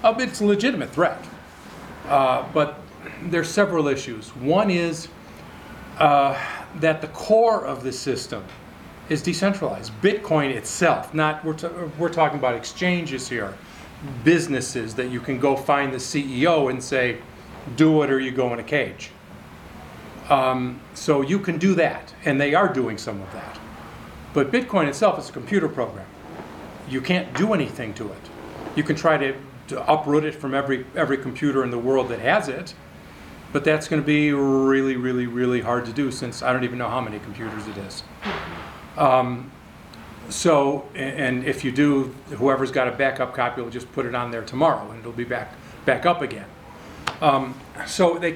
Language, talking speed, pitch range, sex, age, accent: English, 175 wpm, 125-155 Hz, male, 40-59, American